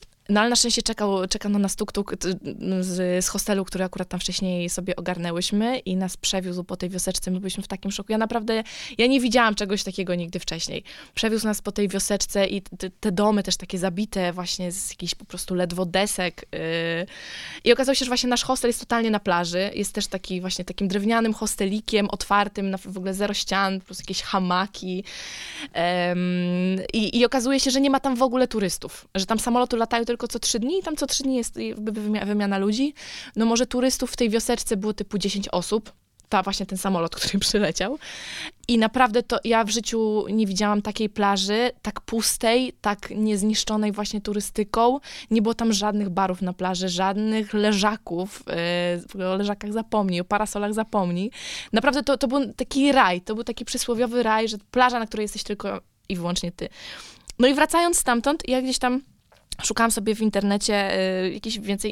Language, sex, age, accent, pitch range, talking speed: Polish, female, 20-39, native, 190-230 Hz, 185 wpm